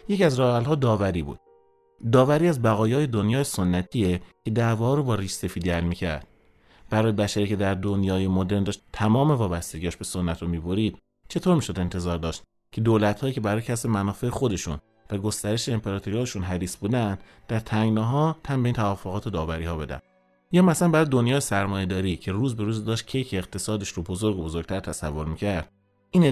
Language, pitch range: Persian, 95-130 Hz